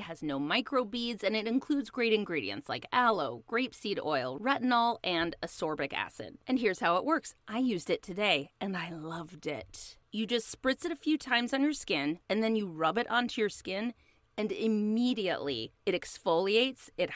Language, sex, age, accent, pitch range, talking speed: English, female, 30-49, American, 185-260 Hz, 180 wpm